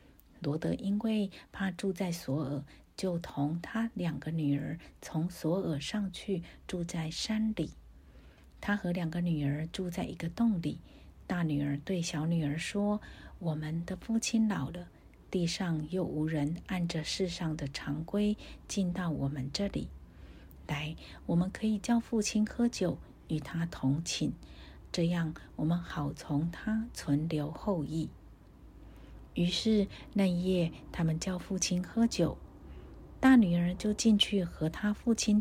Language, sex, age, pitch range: Chinese, female, 50-69, 150-195 Hz